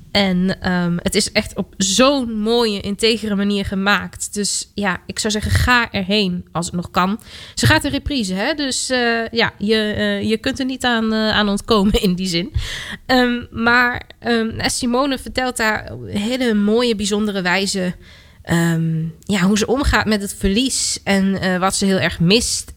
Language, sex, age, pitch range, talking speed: Dutch, female, 20-39, 195-245 Hz, 180 wpm